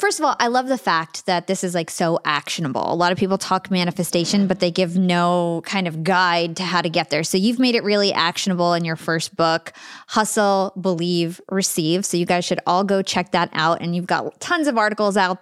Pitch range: 175-220 Hz